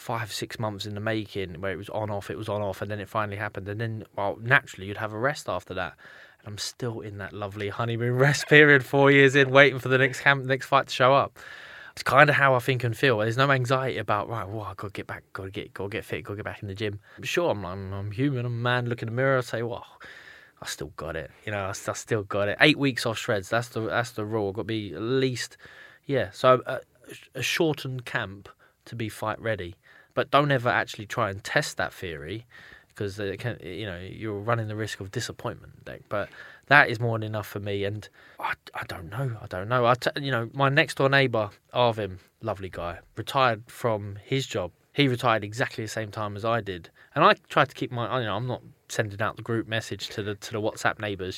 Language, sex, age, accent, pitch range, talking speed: English, male, 20-39, British, 105-130 Hz, 255 wpm